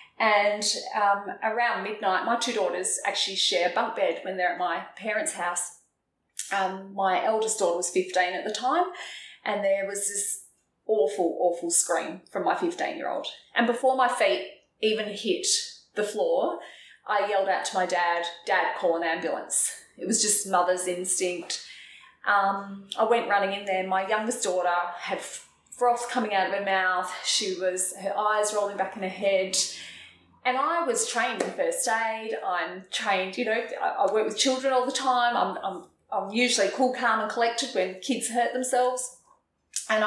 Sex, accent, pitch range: female, Australian, 185-225 Hz